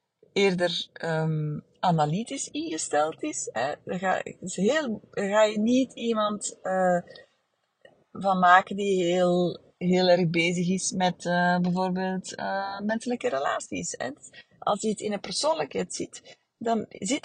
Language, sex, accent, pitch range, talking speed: Dutch, female, Dutch, 175-225 Hz, 125 wpm